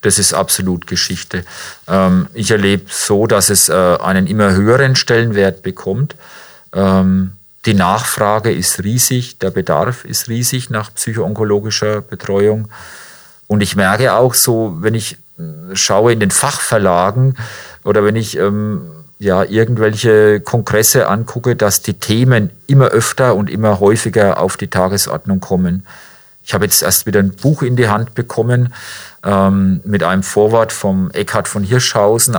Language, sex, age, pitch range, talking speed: German, male, 40-59, 95-115 Hz, 135 wpm